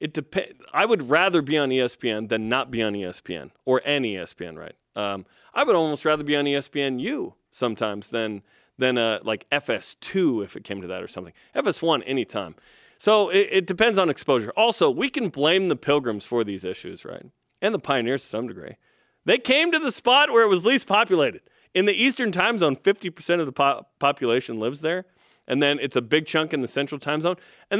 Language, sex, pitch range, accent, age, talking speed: English, male, 135-200 Hz, American, 30-49, 210 wpm